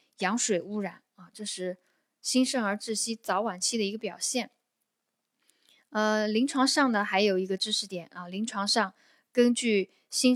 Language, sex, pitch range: Chinese, female, 195-265 Hz